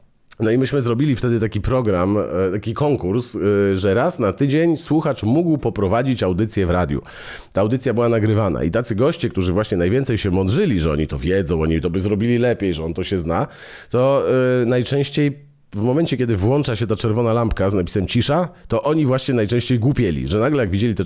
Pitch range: 95-140 Hz